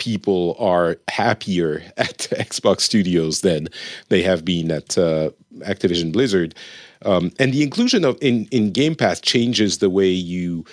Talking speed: 150 wpm